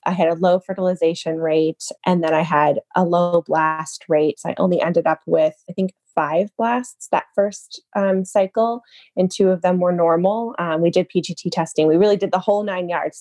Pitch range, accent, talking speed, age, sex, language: 160-200 Hz, American, 210 wpm, 20-39, female, English